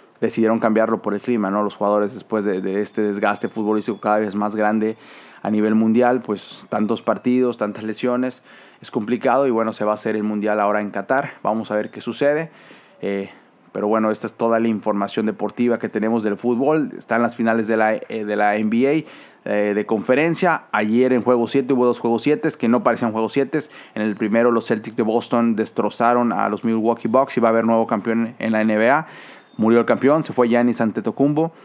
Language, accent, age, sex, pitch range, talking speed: Spanish, Mexican, 30-49, male, 110-120 Hz, 210 wpm